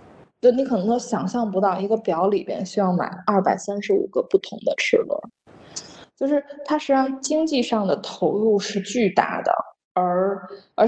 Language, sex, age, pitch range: Chinese, female, 20-39, 190-250 Hz